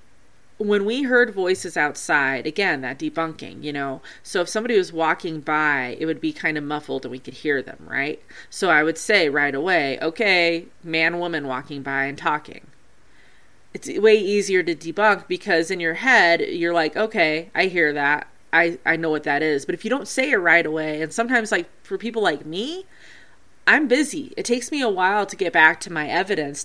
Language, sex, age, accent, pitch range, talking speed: English, female, 30-49, American, 155-210 Hz, 205 wpm